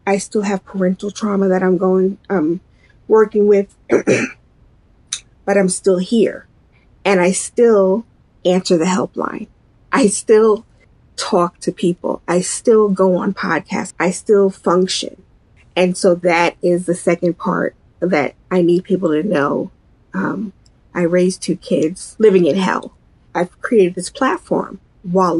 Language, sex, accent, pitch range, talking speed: English, female, American, 175-205 Hz, 140 wpm